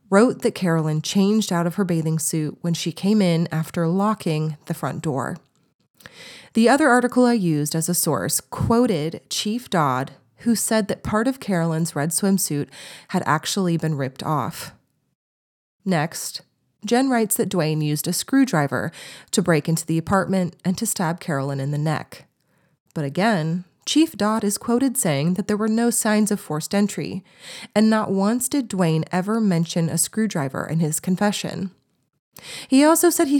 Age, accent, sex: 30-49, American, female